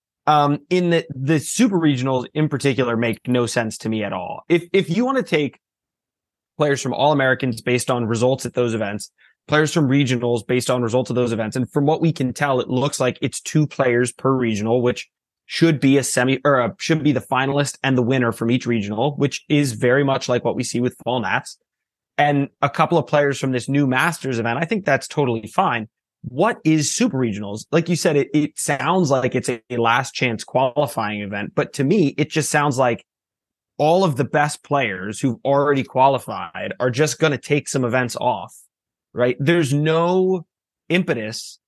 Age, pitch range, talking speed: 20-39, 125-150 Hz, 200 wpm